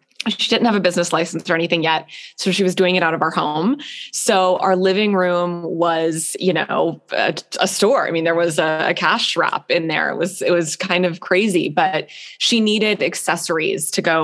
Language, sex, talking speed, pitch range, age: English, female, 215 wpm, 170-200 Hz, 20-39